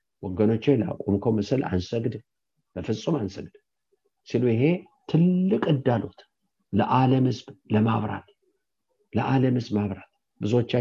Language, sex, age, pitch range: English, male, 50-69, 105-140 Hz